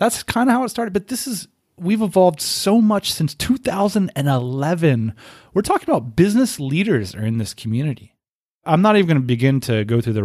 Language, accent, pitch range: English, American, 115-165 Hz